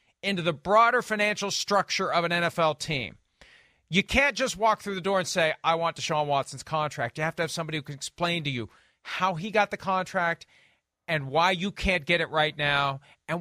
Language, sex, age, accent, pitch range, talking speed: English, male, 40-59, American, 145-195 Hz, 210 wpm